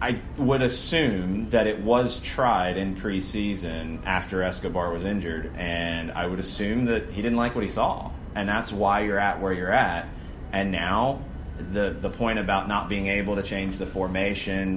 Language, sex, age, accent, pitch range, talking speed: English, male, 30-49, American, 90-105 Hz, 185 wpm